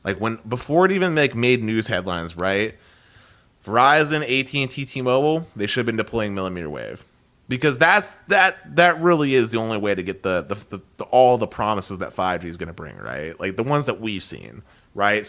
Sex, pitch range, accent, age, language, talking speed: male, 100-135 Hz, American, 30-49, English, 215 wpm